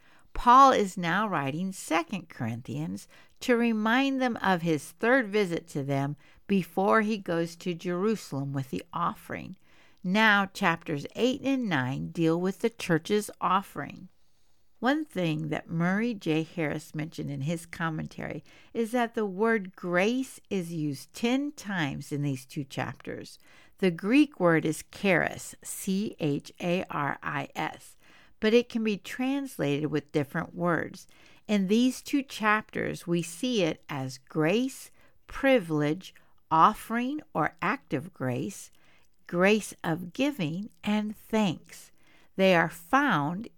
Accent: American